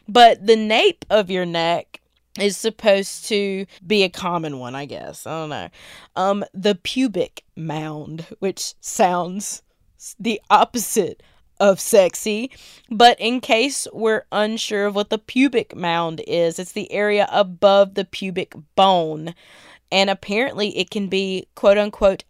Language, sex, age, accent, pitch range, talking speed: English, female, 20-39, American, 175-215 Hz, 145 wpm